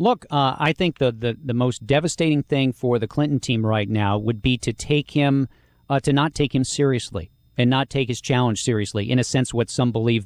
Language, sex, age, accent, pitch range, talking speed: English, male, 40-59, American, 115-140 Hz, 220 wpm